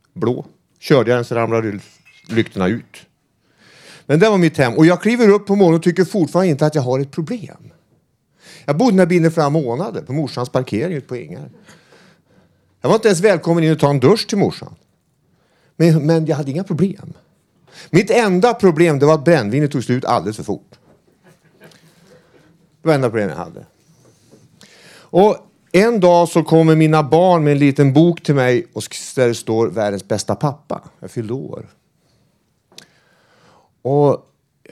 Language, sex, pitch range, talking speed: Swedish, male, 130-175 Hz, 165 wpm